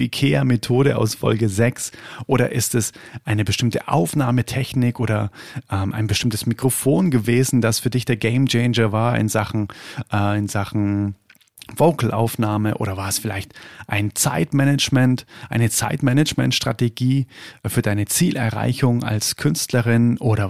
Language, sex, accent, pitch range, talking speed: German, male, German, 110-130 Hz, 125 wpm